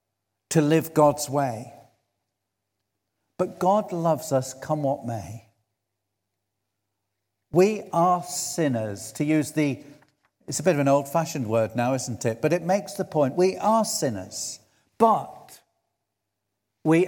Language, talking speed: English, 130 wpm